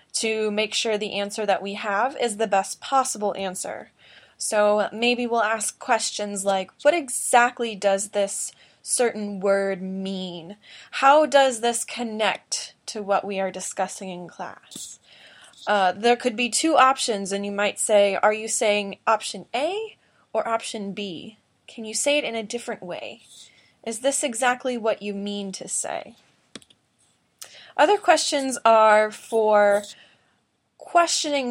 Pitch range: 205-245 Hz